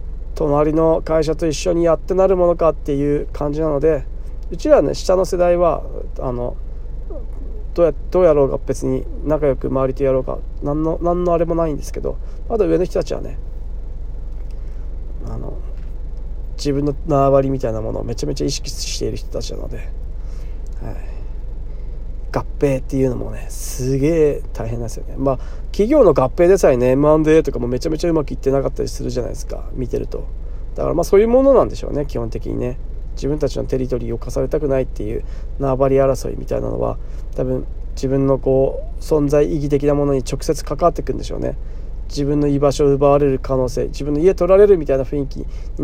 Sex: male